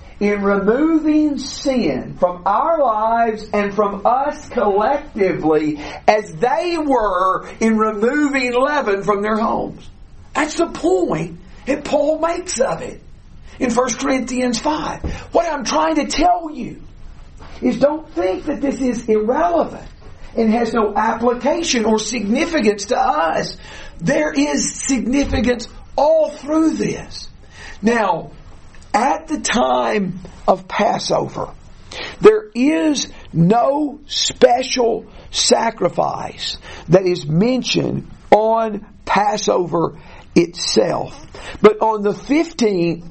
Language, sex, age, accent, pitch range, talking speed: English, male, 40-59, American, 205-285 Hz, 110 wpm